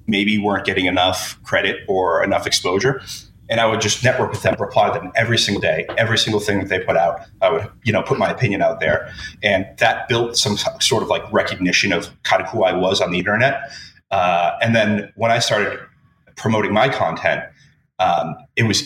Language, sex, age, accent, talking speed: English, male, 30-49, American, 210 wpm